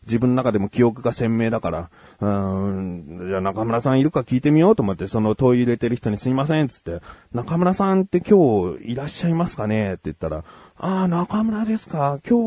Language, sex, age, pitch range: Japanese, male, 30-49, 100-160 Hz